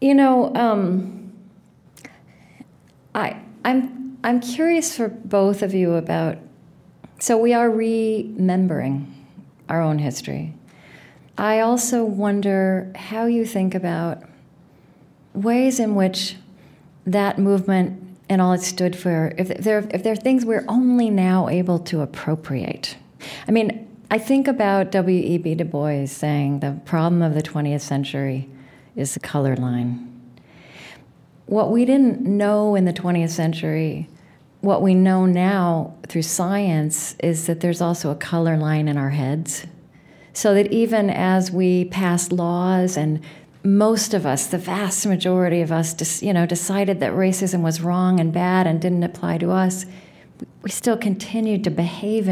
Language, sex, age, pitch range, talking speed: English, female, 40-59, 160-210 Hz, 145 wpm